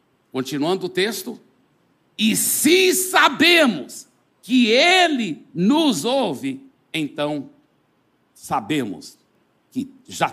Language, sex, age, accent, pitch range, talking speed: Portuguese, male, 60-79, Brazilian, 140-195 Hz, 80 wpm